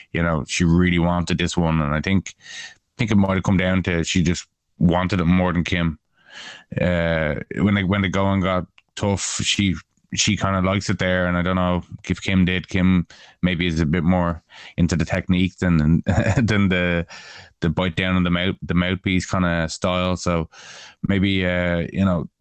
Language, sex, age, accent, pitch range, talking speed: English, male, 20-39, Irish, 85-95 Hz, 205 wpm